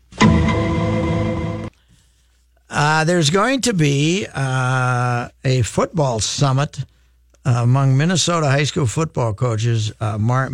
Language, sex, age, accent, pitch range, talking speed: English, male, 60-79, American, 115-145 Hz, 90 wpm